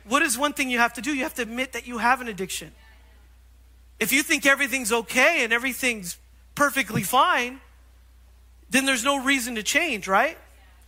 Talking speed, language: 180 wpm, English